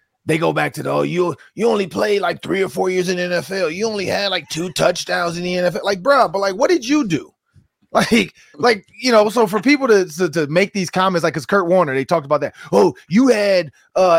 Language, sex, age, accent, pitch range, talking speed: English, male, 30-49, American, 130-190 Hz, 255 wpm